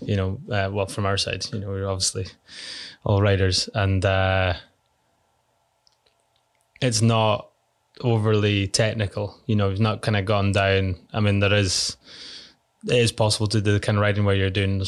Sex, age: male, 20-39